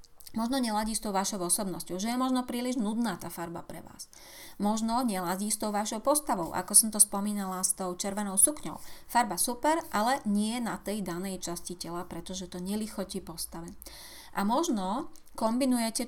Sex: female